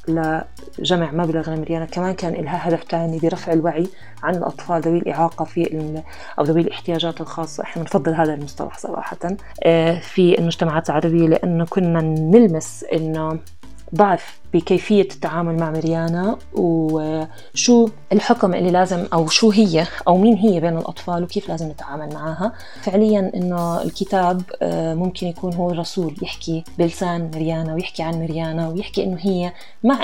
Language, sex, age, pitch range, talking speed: Arabic, female, 20-39, 165-195 Hz, 140 wpm